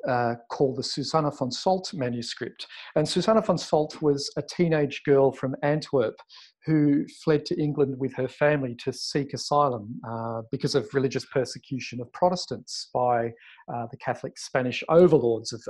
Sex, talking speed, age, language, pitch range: male, 155 wpm, 40-59, English, 120-155 Hz